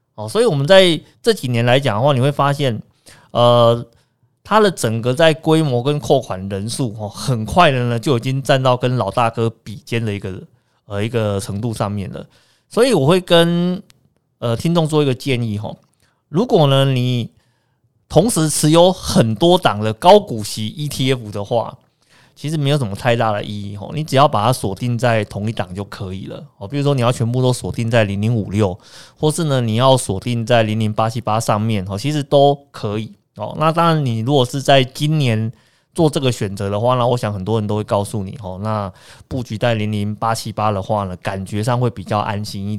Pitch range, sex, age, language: 105-140 Hz, male, 20-39, Chinese